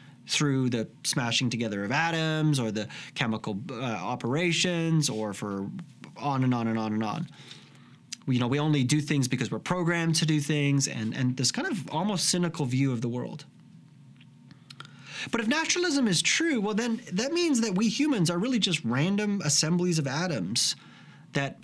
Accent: American